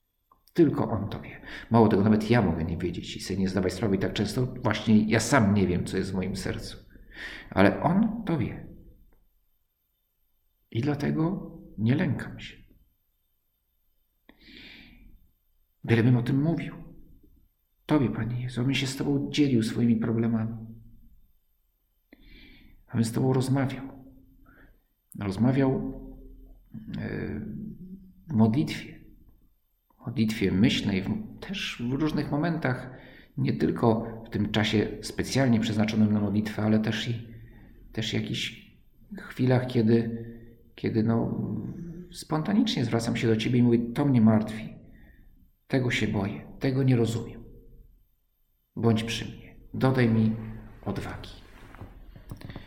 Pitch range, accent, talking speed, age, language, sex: 100-130 Hz, native, 120 wpm, 50-69, Polish, male